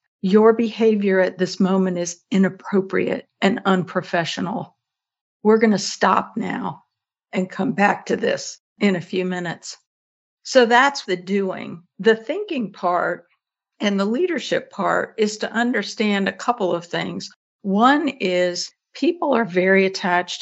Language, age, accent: English, 60-79, American